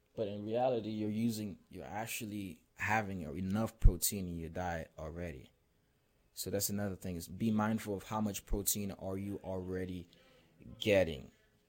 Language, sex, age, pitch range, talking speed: English, male, 20-39, 95-115 Hz, 150 wpm